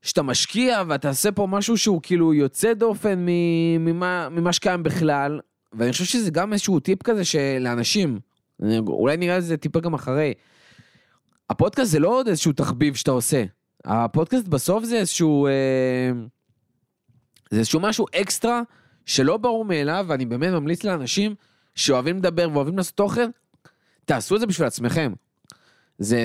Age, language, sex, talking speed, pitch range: 20-39, Hebrew, male, 140 wpm, 130-180 Hz